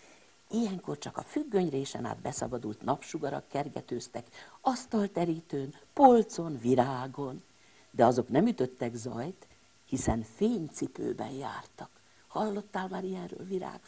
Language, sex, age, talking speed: Hungarian, female, 50-69, 105 wpm